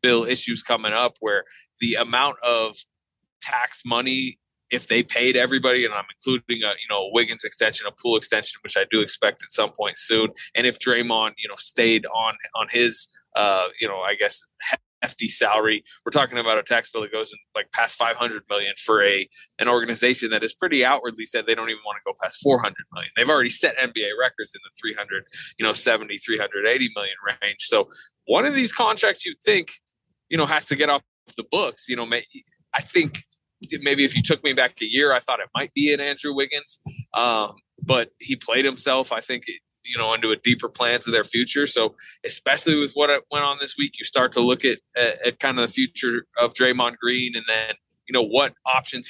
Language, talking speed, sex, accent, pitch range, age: English, 210 wpm, male, American, 115-145 Hz, 20-39